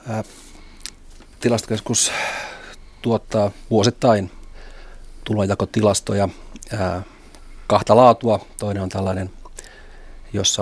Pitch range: 95-110 Hz